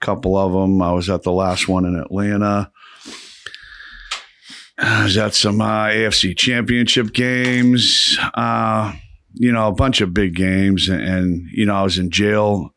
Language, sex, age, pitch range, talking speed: English, male, 50-69, 90-105 Hz, 165 wpm